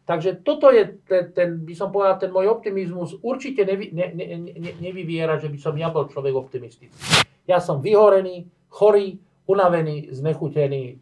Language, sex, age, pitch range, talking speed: Slovak, male, 50-69, 150-200 Hz, 165 wpm